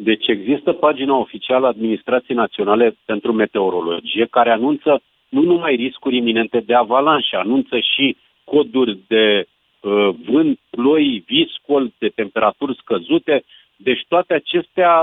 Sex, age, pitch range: male, 50-69, 130-180 Hz